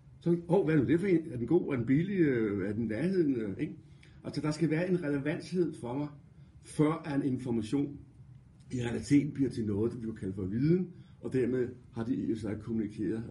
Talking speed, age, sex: 220 wpm, 60-79, male